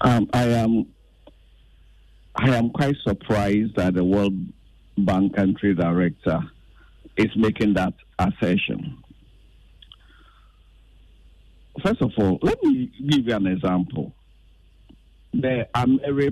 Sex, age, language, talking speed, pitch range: male, 50-69, English, 105 wpm, 100-145 Hz